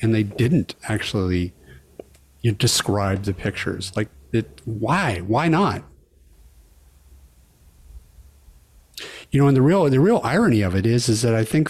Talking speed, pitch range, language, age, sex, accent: 150 wpm, 105-145 Hz, English, 50-69, male, American